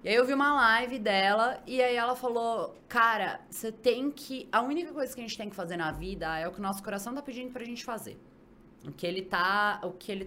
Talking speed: 235 wpm